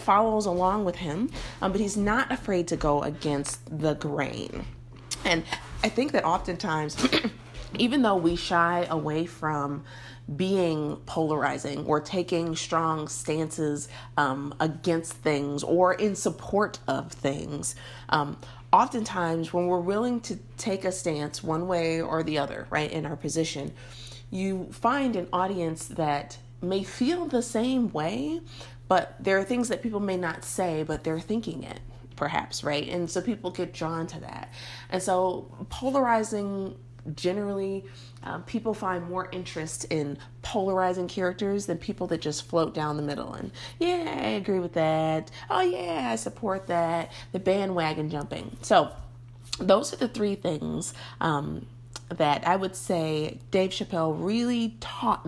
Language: English